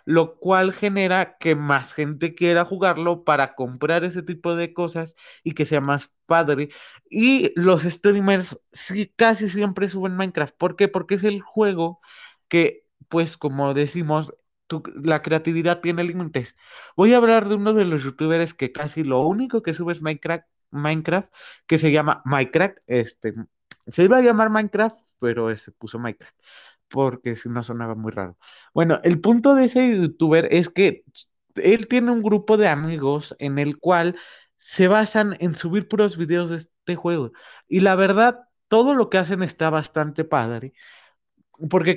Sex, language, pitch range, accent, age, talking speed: male, Spanish, 150-200 Hz, Mexican, 30-49, 160 wpm